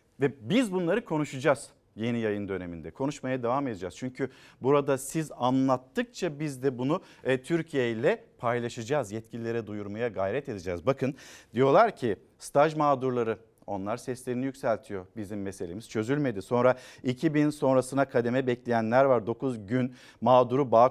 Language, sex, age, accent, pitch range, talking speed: Turkish, male, 50-69, native, 120-155 Hz, 130 wpm